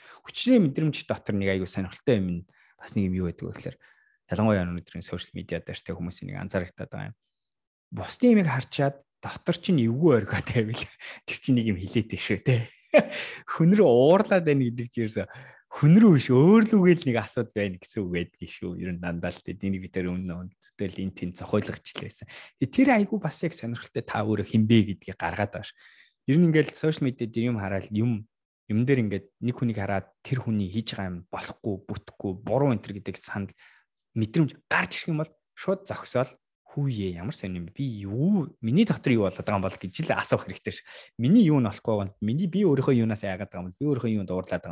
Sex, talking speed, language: male, 165 wpm, English